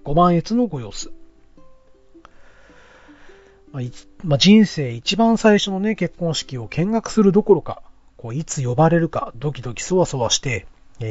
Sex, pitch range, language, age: male, 120-185 Hz, Japanese, 40-59